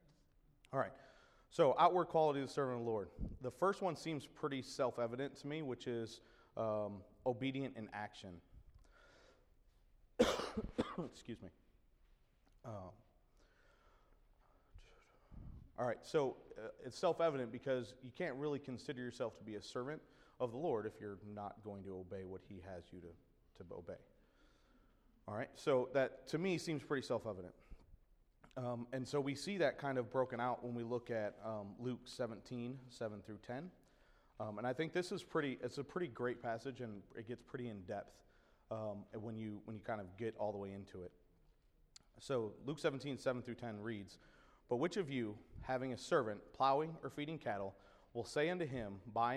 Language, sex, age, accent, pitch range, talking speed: English, male, 30-49, American, 105-140 Hz, 175 wpm